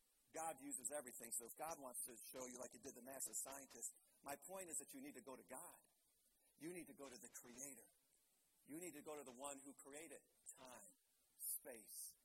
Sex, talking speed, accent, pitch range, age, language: male, 215 wpm, American, 145-230 Hz, 50-69, English